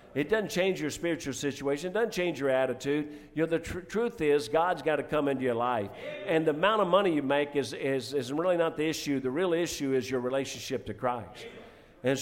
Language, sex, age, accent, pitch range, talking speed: English, male, 50-69, American, 140-170 Hz, 230 wpm